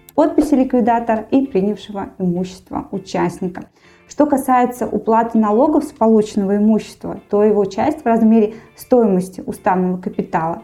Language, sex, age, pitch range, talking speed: Russian, female, 20-39, 190-235 Hz, 120 wpm